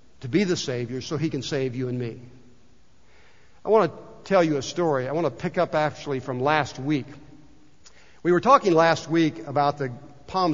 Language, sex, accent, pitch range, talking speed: English, male, American, 145-190 Hz, 200 wpm